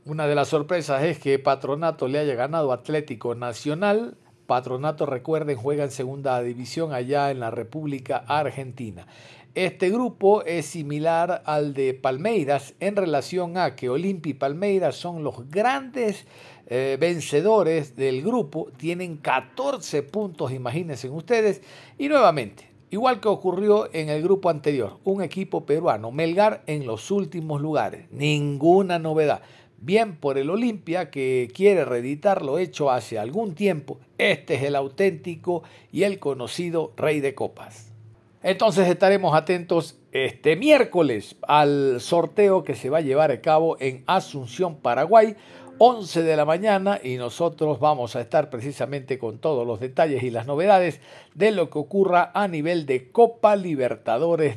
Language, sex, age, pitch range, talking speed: Spanish, male, 50-69, 135-185 Hz, 145 wpm